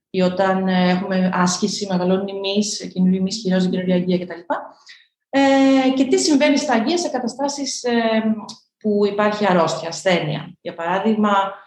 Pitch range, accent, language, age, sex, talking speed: 180-235 Hz, native, Greek, 30-49, female, 125 wpm